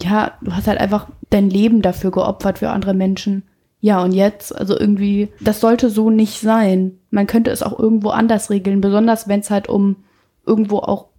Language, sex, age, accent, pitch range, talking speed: German, female, 20-39, German, 195-220 Hz, 195 wpm